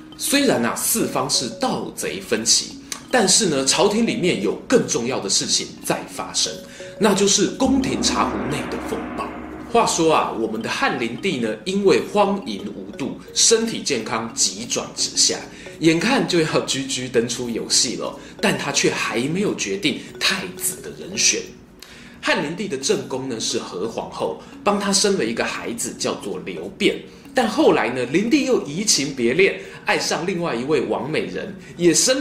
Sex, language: male, Chinese